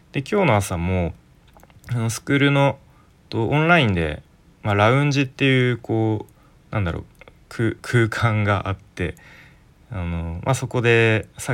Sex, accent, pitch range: male, native, 85-115 Hz